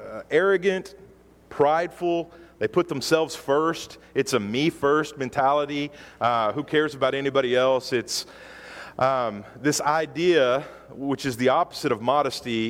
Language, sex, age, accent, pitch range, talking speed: English, male, 40-59, American, 130-170 Hz, 120 wpm